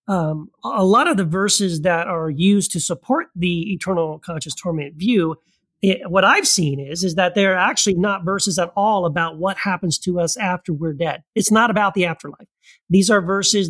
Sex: male